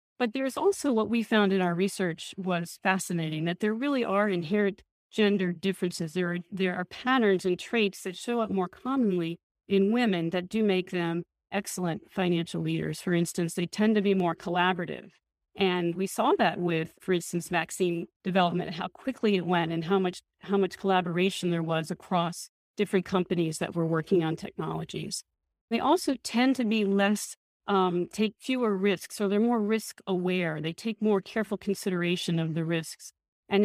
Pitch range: 175-210 Hz